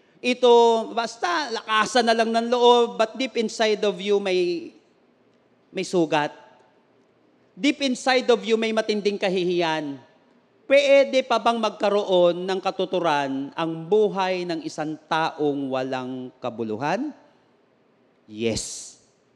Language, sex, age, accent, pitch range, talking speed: English, male, 40-59, Filipino, 170-225 Hz, 110 wpm